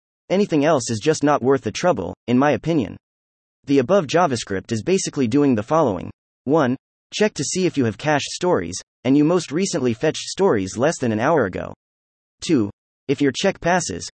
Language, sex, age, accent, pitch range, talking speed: English, male, 30-49, American, 105-165 Hz, 185 wpm